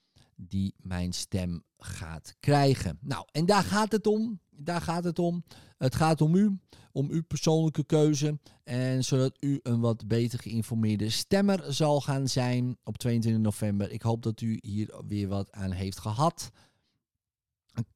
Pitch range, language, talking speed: 105-135 Hz, Dutch, 160 wpm